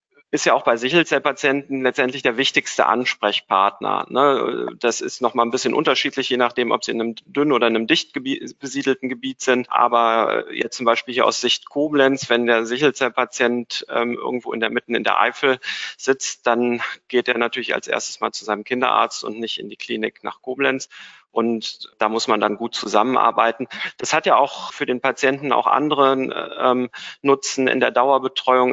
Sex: male